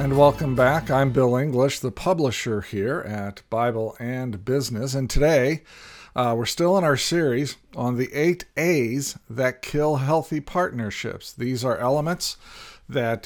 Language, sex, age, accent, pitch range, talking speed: English, male, 50-69, American, 115-140 Hz, 150 wpm